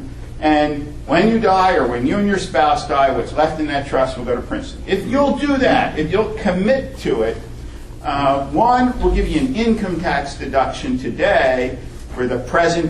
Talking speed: 195 wpm